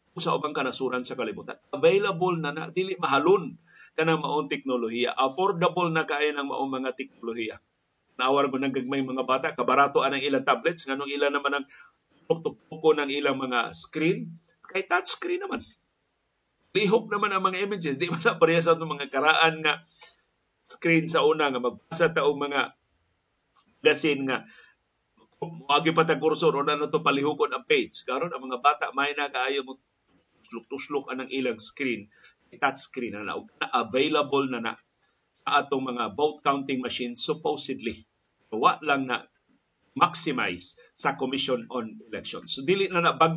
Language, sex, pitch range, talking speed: Filipino, male, 130-160 Hz, 155 wpm